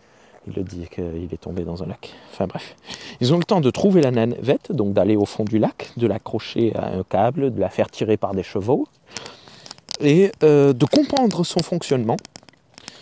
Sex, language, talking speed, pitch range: male, French, 195 wpm, 110-150 Hz